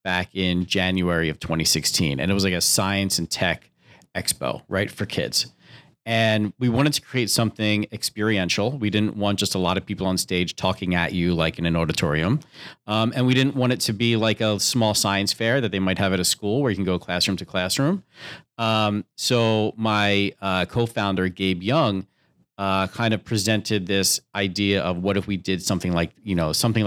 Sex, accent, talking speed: male, American, 205 wpm